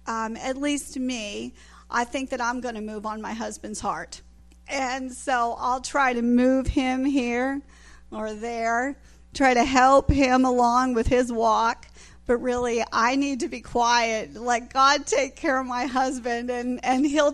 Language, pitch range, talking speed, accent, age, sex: English, 225-265 Hz, 175 wpm, American, 40-59, female